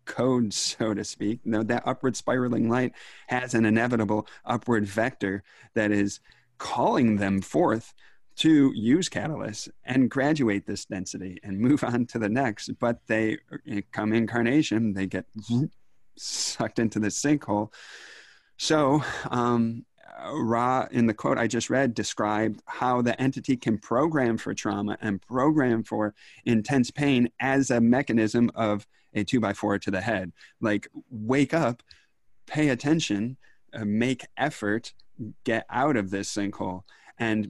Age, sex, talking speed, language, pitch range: 30-49, male, 140 wpm, English, 105-125 Hz